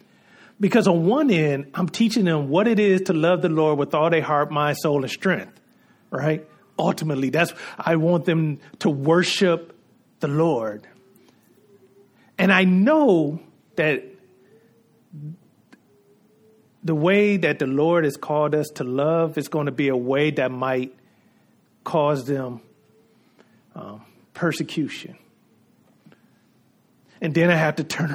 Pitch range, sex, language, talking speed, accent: 145-175 Hz, male, English, 135 wpm, American